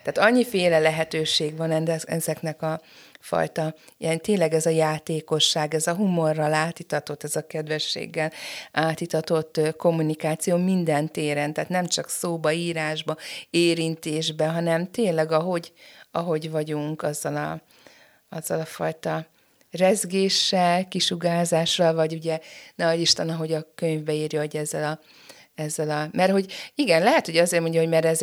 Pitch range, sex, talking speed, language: 155-170 Hz, female, 140 wpm, Hungarian